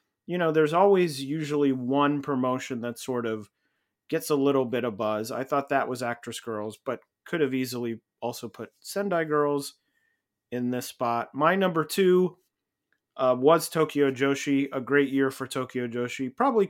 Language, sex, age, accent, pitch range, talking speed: English, male, 30-49, American, 120-150 Hz, 170 wpm